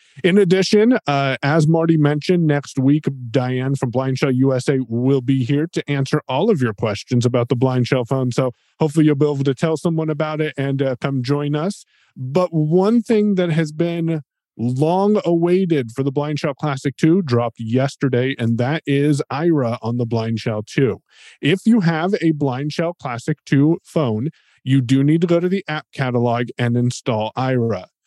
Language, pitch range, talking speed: English, 125-160 Hz, 185 wpm